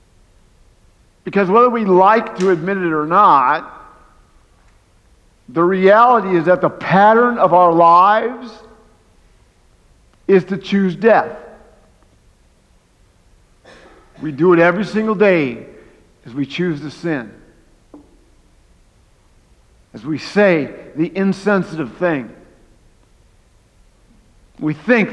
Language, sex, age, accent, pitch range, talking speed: English, male, 50-69, American, 115-180 Hz, 100 wpm